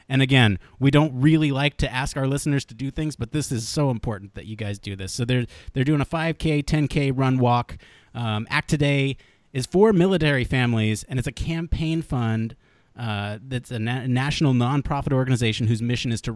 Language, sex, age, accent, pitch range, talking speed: English, male, 30-49, American, 110-150 Hz, 200 wpm